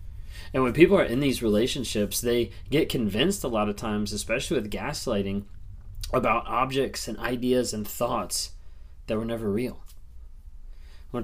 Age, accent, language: 20-39, American, English